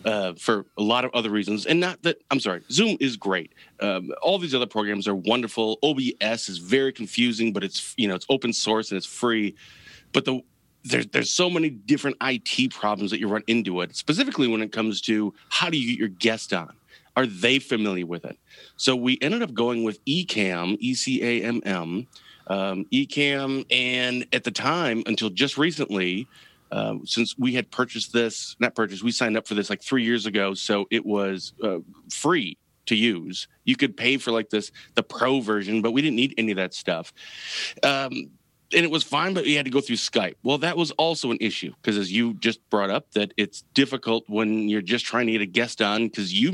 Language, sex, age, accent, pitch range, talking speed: English, male, 30-49, American, 105-130 Hz, 210 wpm